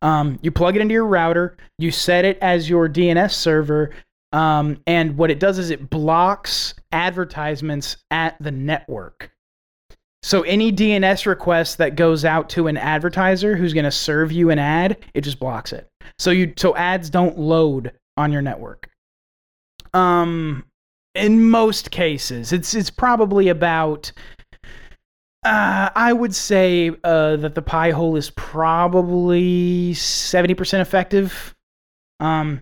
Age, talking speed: 30-49, 145 wpm